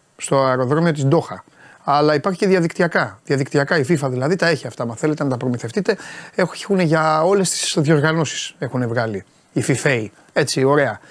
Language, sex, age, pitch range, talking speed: Greek, male, 30-49, 135-200 Hz, 175 wpm